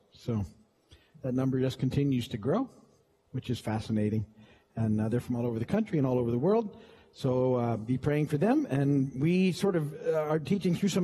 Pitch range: 125-155 Hz